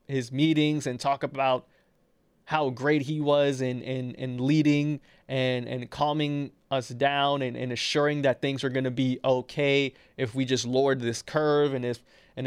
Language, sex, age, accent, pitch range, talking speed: English, male, 20-39, American, 130-155 Hz, 175 wpm